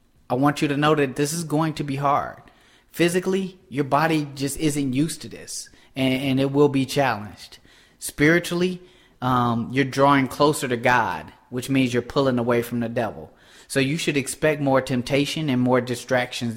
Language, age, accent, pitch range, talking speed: English, 30-49, American, 120-140 Hz, 180 wpm